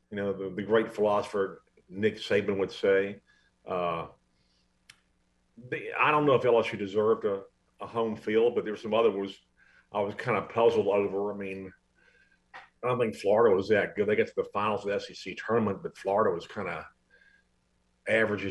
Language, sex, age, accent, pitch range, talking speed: English, male, 50-69, American, 95-135 Hz, 190 wpm